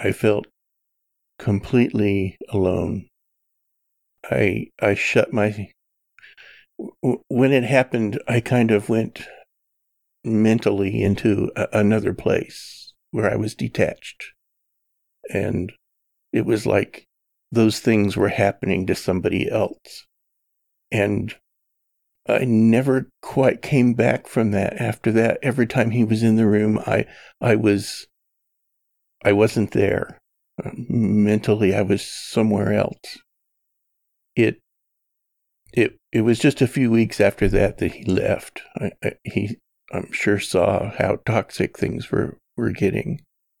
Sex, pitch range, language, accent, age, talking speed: male, 100-115 Hz, English, American, 50-69, 120 wpm